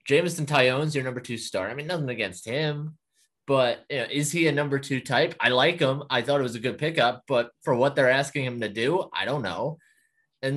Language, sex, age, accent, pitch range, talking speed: English, male, 20-39, American, 135-180 Hz, 240 wpm